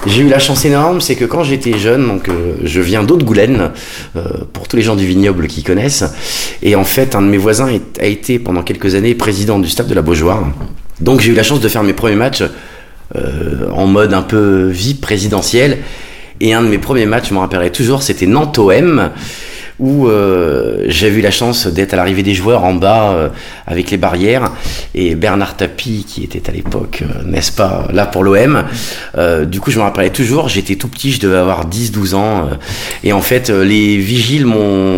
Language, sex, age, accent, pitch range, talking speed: French, male, 30-49, French, 95-120 Hz, 210 wpm